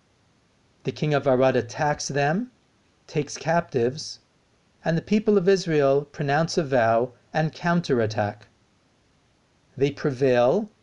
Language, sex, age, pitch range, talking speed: English, male, 40-59, 115-160 Hz, 110 wpm